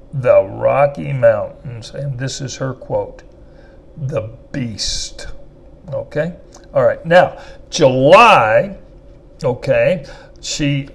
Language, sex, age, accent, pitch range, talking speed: English, male, 60-79, American, 135-190 Hz, 95 wpm